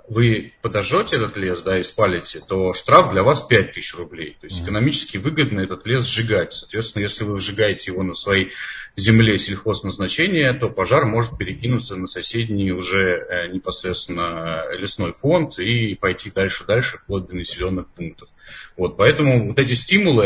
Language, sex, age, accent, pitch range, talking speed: Russian, male, 30-49, native, 95-120 Hz, 150 wpm